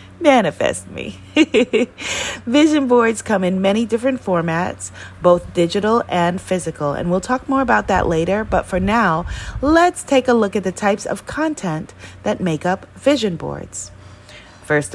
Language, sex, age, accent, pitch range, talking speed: English, female, 30-49, American, 160-225 Hz, 155 wpm